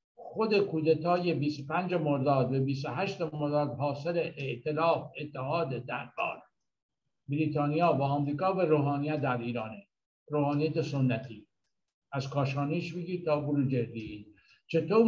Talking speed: 105 wpm